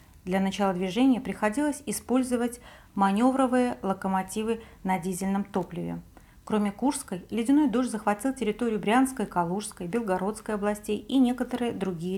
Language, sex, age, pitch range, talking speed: Russian, female, 40-59, 190-250 Hz, 115 wpm